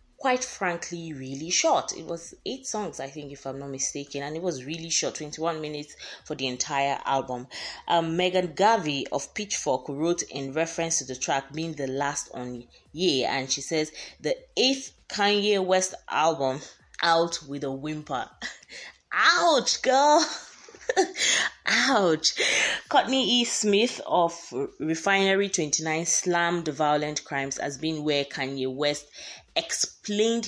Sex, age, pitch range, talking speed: female, 20-39, 140-185 Hz, 140 wpm